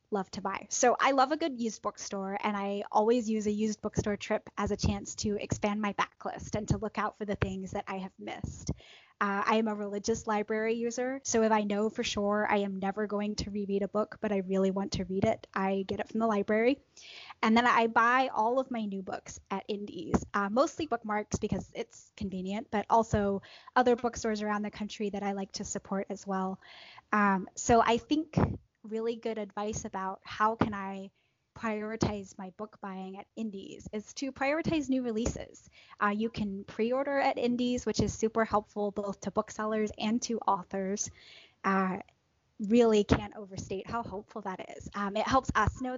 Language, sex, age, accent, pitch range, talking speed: English, female, 10-29, American, 200-230 Hz, 200 wpm